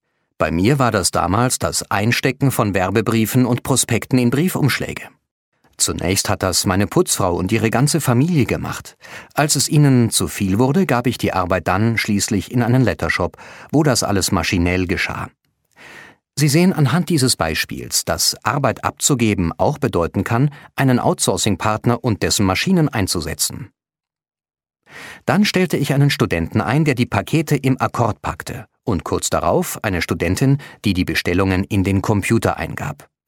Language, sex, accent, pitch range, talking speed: German, male, German, 95-130 Hz, 150 wpm